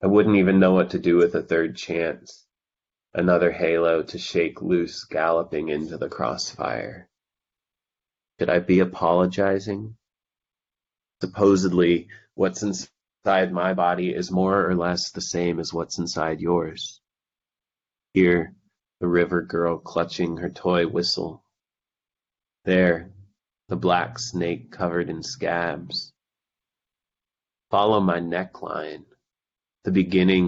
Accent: American